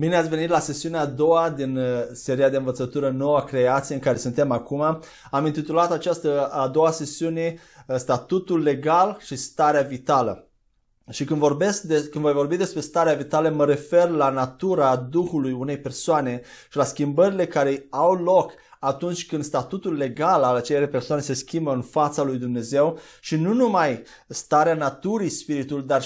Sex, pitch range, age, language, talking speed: male, 135-170 Hz, 30-49, Romanian, 165 wpm